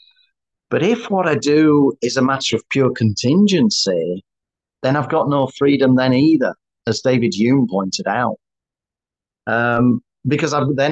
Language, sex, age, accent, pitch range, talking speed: Swedish, male, 40-59, British, 105-140 Hz, 145 wpm